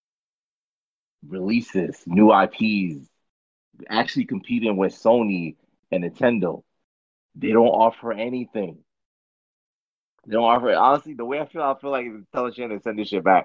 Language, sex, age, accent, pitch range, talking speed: English, male, 30-49, American, 105-165 Hz, 145 wpm